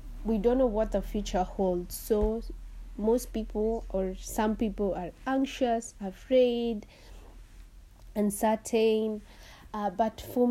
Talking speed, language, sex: 115 wpm, English, female